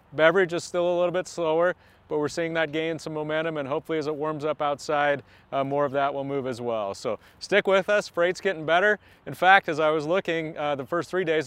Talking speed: 245 wpm